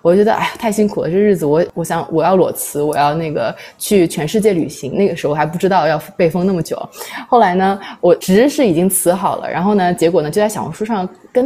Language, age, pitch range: Chinese, 20-39, 155-220 Hz